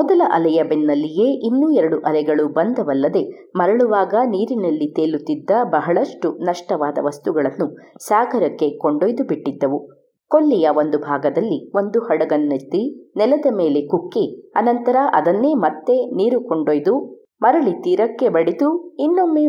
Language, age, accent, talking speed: Kannada, 20-39, native, 100 wpm